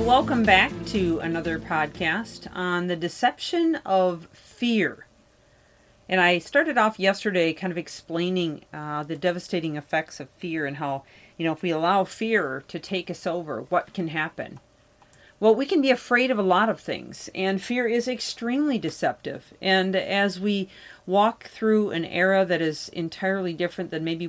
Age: 40-59